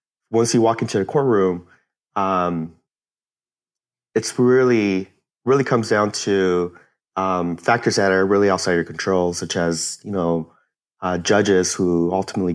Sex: male